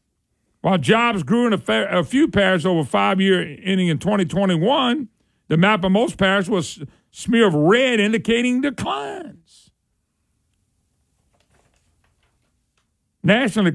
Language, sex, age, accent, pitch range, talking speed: English, male, 50-69, American, 160-215 Hz, 125 wpm